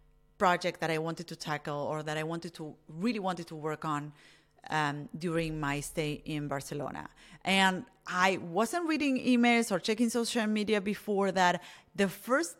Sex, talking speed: female, 165 wpm